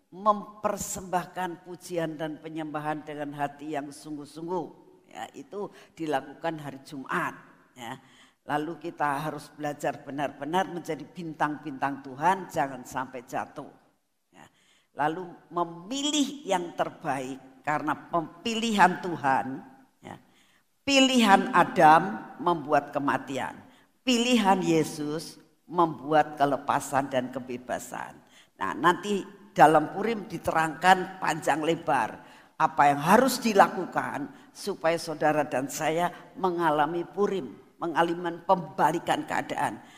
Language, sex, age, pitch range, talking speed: Indonesian, female, 60-79, 150-190 Hz, 95 wpm